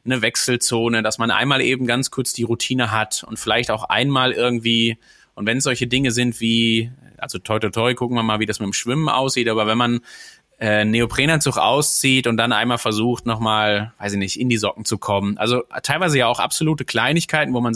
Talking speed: 215 wpm